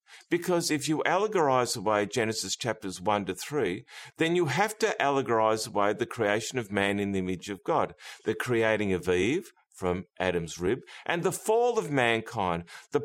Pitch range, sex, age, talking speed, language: 110-175 Hz, male, 50-69, 175 wpm, English